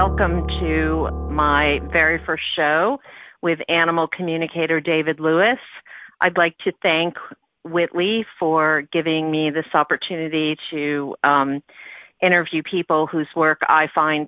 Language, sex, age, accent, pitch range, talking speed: English, female, 40-59, American, 135-165 Hz, 120 wpm